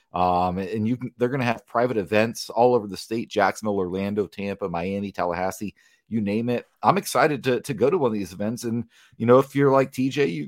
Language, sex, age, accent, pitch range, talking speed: English, male, 30-49, American, 100-125 Hz, 230 wpm